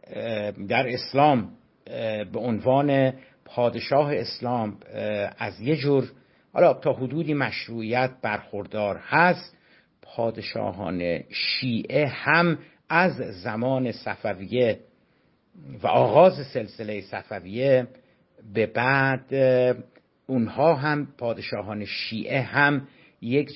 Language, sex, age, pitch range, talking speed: Persian, male, 60-79, 115-150 Hz, 85 wpm